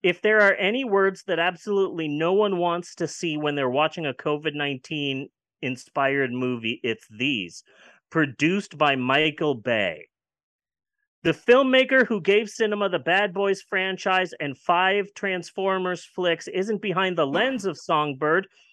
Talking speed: 140 wpm